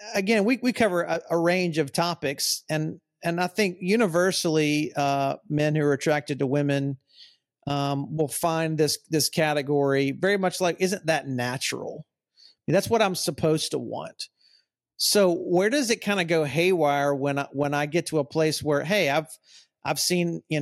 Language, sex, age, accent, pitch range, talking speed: English, male, 50-69, American, 140-170 Hz, 175 wpm